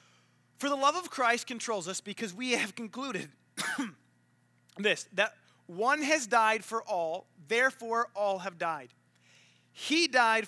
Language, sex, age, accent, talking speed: English, male, 30-49, American, 135 wpm